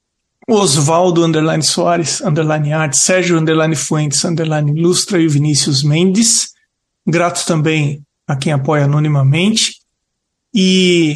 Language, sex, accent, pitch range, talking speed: Portuguese, male, Brazilian, 160-220 Hz, 110 wpm